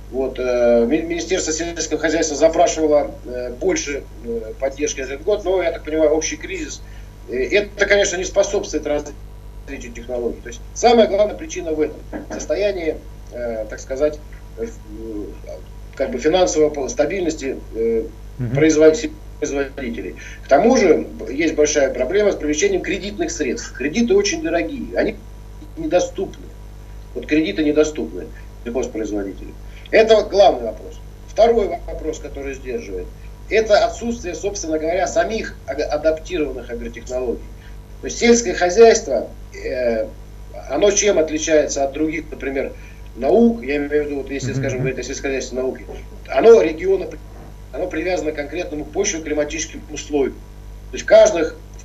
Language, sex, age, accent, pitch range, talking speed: Russian, male, 50-69, native, 120-185 Hz, 120 wpm